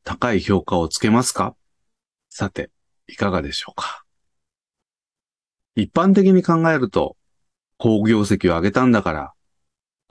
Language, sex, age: Japanese, male, 40-59